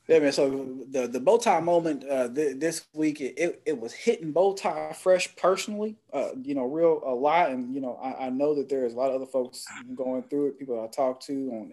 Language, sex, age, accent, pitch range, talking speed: English, male, 30-49, American, 130-175 Hz, 255 wpm